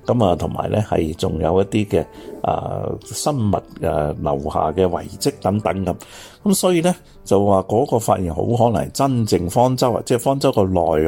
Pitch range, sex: 85-115 Hz, male